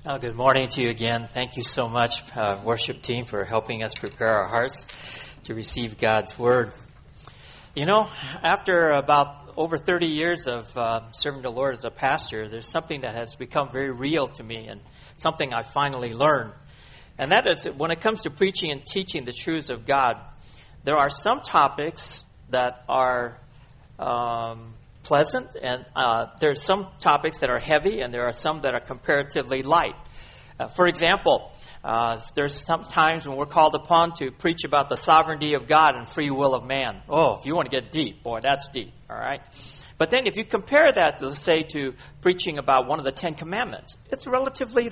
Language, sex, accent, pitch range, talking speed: English, male, American, 125-165 Hz, 190 wpm